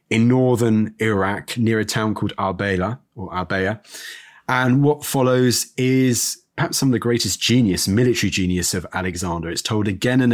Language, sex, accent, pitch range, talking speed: English, male, British, 105-130 Hz, 155 wpm